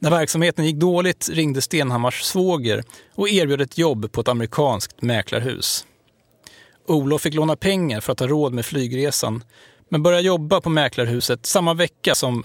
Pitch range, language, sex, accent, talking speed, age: 125-170 Hz, Swedish, male, native, 160 wpm, 30-49